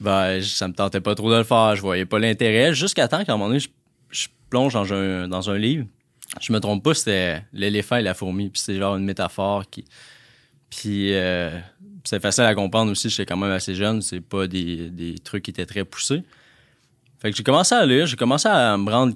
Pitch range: 100-125 Hz